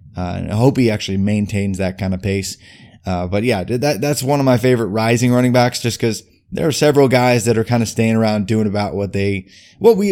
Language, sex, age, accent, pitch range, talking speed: English, male, 20-39, American, 100-135 Hz, 245 wpm